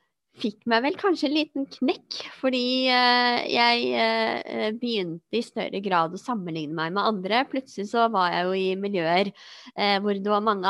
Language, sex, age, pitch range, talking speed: English, female, 20-39, 190-240 Hz, 170 wpm